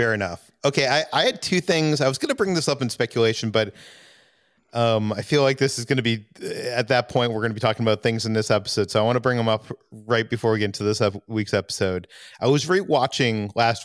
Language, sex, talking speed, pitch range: English, male, 255 wpm, 105-125 Hz